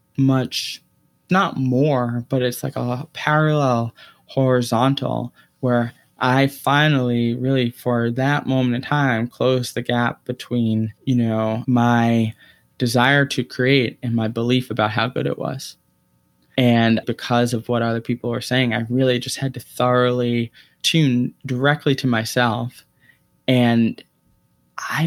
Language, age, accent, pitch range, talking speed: English, 20-39, American, 120-135 Hz, 135 wpm